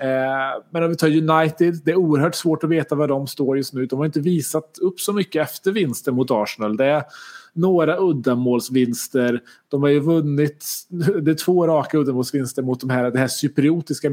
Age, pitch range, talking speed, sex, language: 30-49, 130-170 Hz, 195 wpm, male, Swedish